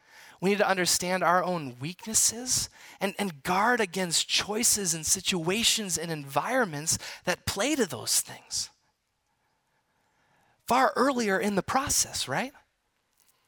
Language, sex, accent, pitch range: English, male, American, 160-225 Hz